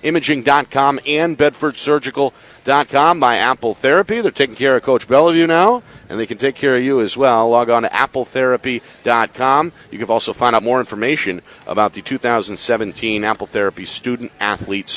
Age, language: 50-69, English